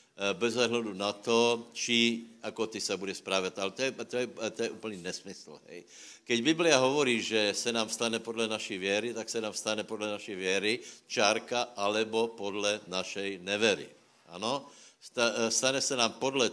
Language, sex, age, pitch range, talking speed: Slovak, male, 60-79, 105-120 Hz, 165 wpm